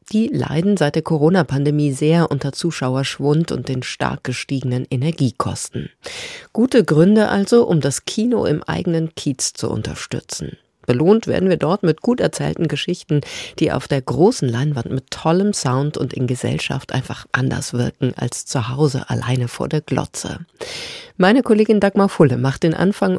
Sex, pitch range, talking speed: female, 135-180 Hz, 155 wpm